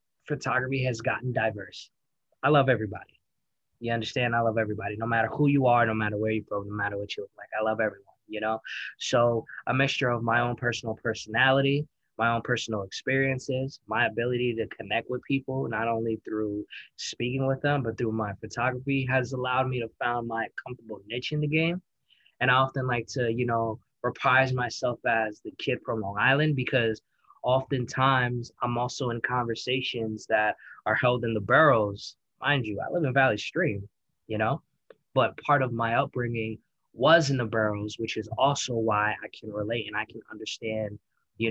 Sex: male